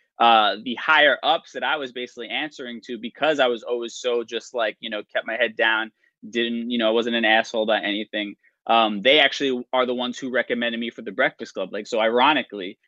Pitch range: 115-130 Hz